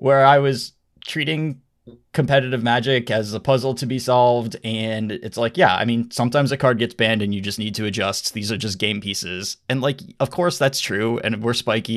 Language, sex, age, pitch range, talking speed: English, male, 20-39, 105-130 Hz, 215 wpm